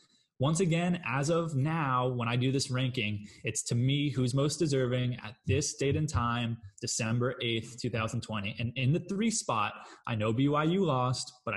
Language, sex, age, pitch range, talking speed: English, male, 20-39, 115-130 Hz, 175 wpm